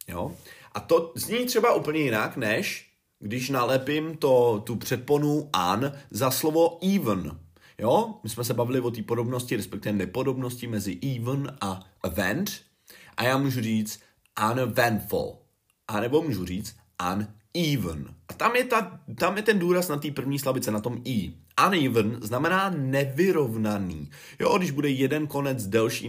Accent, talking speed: native, 150 wpm